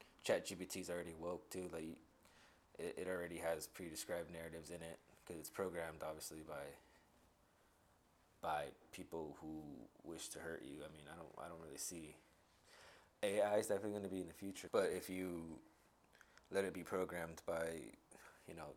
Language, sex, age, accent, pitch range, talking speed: English, male, 20-39, American, 80-90 Hz, 170 wpm